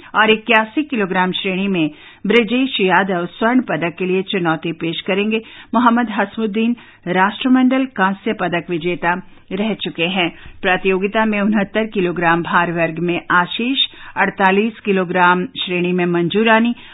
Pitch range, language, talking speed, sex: 175-225 Hz, English, 130 wpm, female